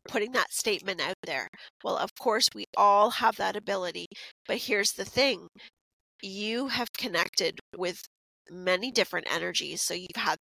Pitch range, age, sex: 190-230 Hz, 30-49, female